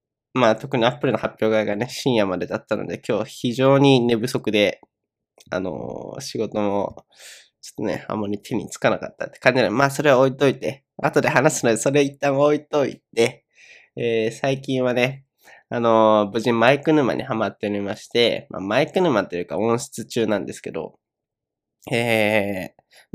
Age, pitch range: 20-39, 115-150 Hz